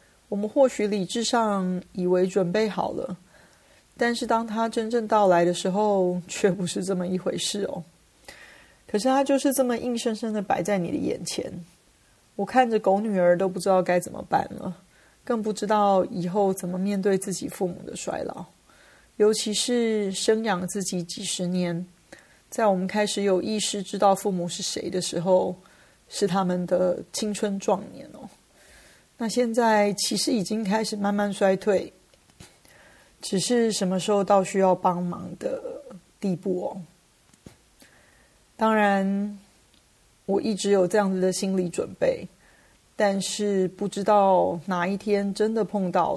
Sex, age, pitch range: female, 30-49, 185-215 Hz